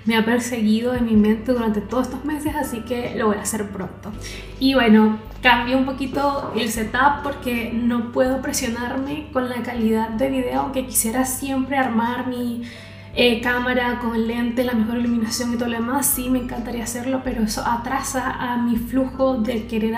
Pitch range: 230-260 Hz